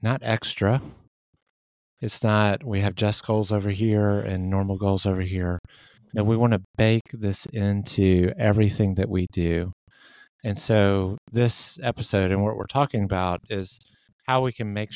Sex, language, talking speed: male, English, 160 wpm